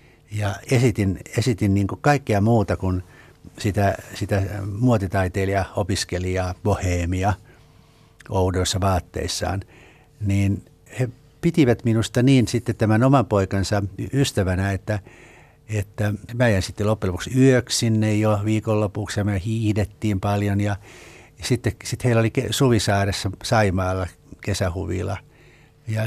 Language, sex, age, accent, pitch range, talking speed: Finnish, male, 60-79, native, 95-115 Hz, 110 wpm